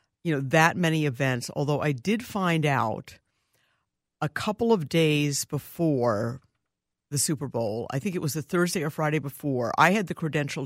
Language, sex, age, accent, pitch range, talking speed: English, female, 60-79, American, 140-175 Hz, 175 wpm